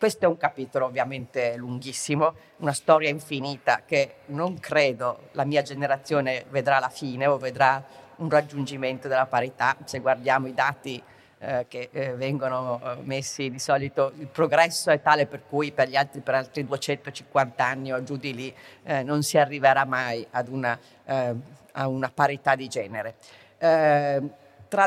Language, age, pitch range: Italian, 40-59, 130-155 Hz